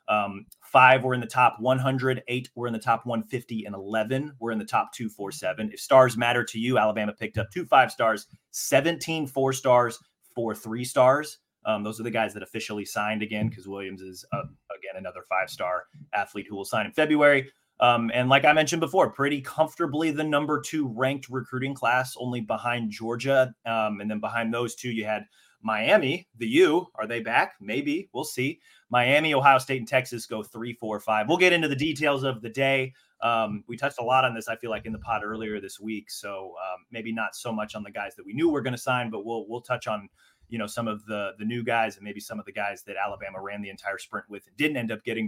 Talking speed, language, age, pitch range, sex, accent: 230 wpm, English, 30-49, 110-135 Hz, male, American